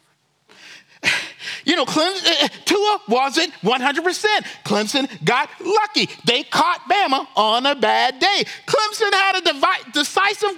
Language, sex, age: English, male, 40-59